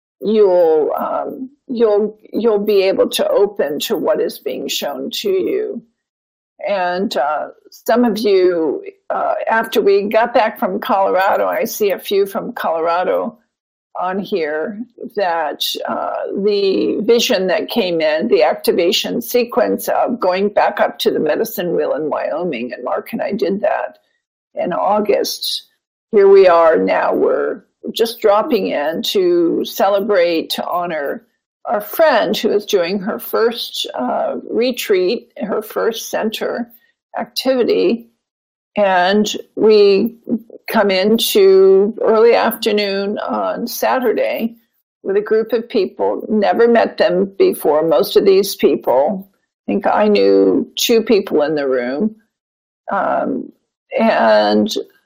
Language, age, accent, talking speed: English, 50-69, American, 130 wpm